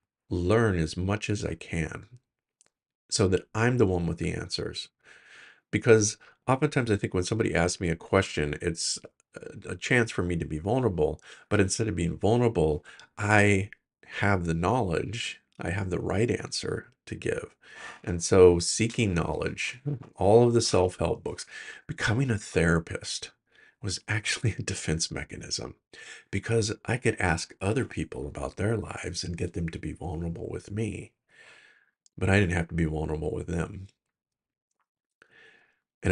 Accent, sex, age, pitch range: American, male, 50-69, 85-105 Hz